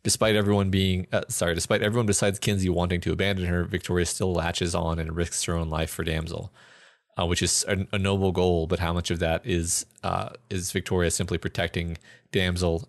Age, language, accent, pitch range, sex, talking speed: 30-49, English, American, 85-100 Hz, male, 200 wpm